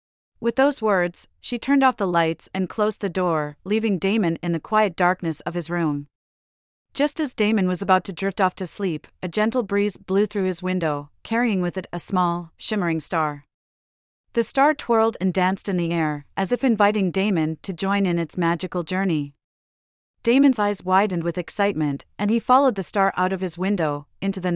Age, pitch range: 40-59, 165-210 Hz